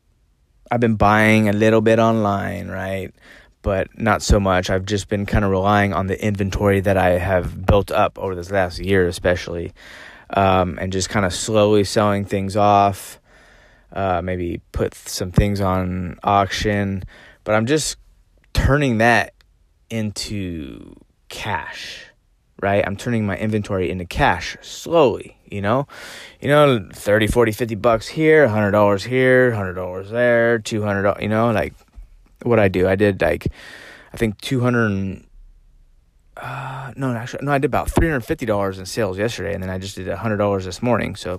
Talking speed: 170 wpm